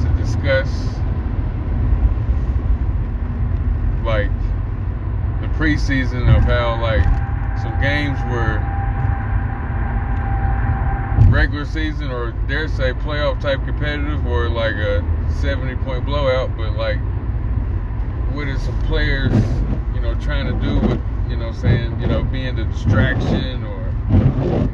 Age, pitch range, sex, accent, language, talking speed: 20-39, 95-110 Hz, male, American, English, 115 wpm